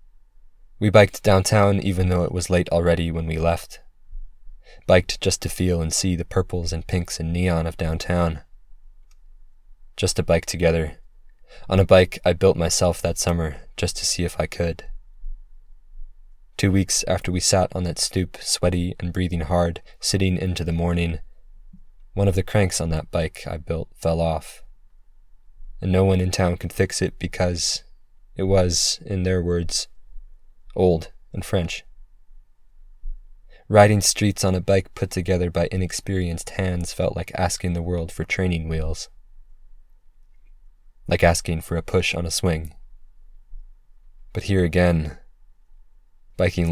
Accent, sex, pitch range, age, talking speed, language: American, male, 85-95 Hz, 20-39, 150 wpm, English